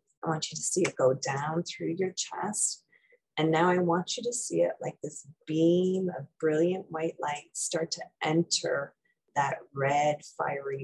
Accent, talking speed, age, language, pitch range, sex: American, 175 wpm, 30-49, English, 150-195 Hz, female